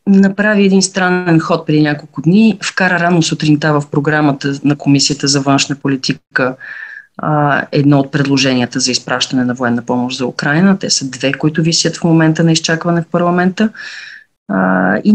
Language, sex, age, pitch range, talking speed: Bulgarian, female, 30-49, 145-190 Hz, 155 wpm